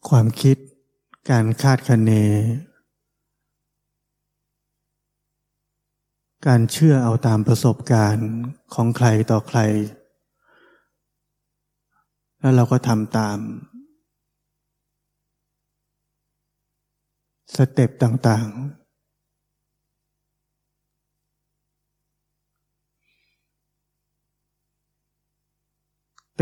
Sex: male